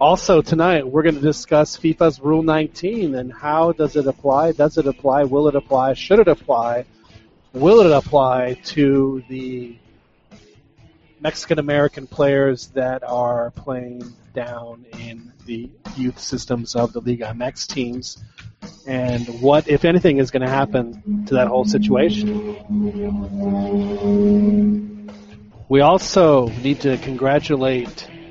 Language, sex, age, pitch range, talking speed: English, male, 40-59, 120-155 Hz, 125 wpm